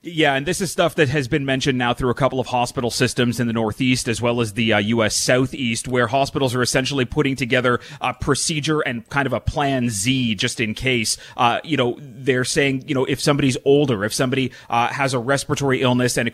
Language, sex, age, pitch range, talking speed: English, male, 30-49, 120-140 Hz, 230 wpm